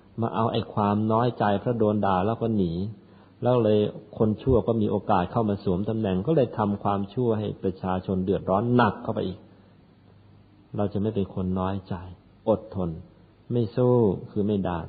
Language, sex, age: Thai, male, 50-69